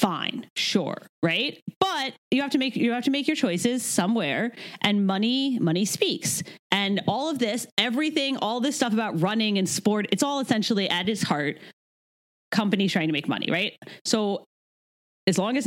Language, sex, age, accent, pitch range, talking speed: English, female, 30-49, American, 165-235 Hz, 175 wpm